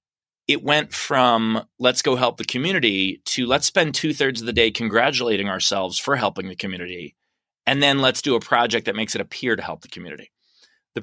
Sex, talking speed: male, 195 wpm